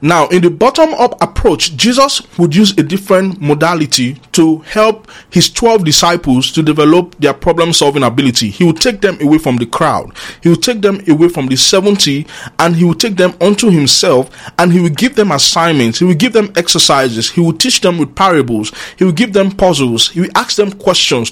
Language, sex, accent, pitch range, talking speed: English, male, Nigerian, 150-210 Hz, 200 wpm